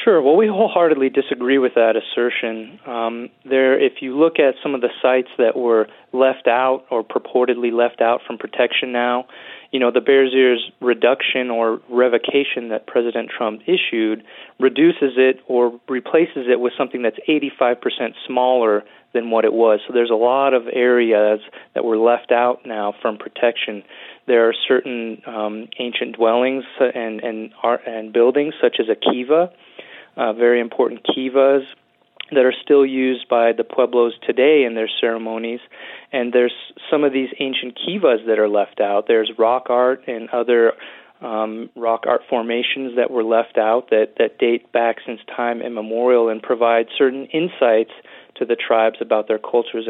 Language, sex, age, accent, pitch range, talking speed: English, male, 30-49, American, 115-130 Hz, 165 wpm